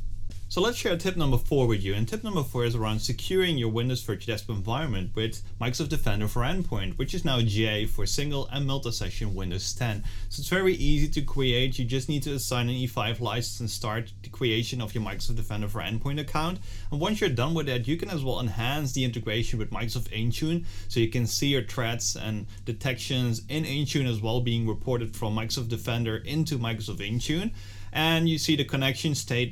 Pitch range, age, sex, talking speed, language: 110-135 Hz, 30-49, male, 205 wpm, English